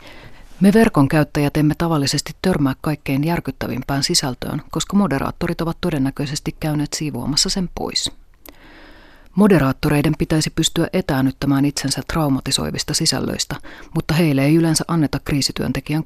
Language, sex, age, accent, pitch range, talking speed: Finnish, female, 30-49, native, 135-165 Hz, 110 wpm